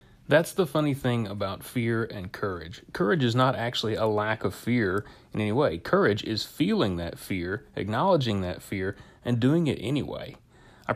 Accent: American